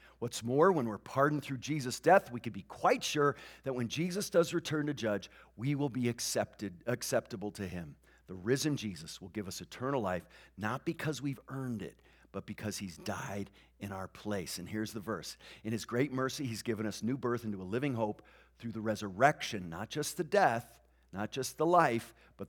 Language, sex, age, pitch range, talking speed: English, male, 50-69, 115-185 Hz, 205 wpm